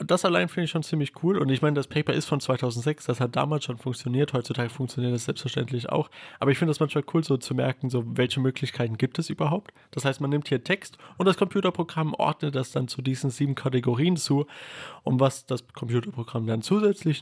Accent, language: German, German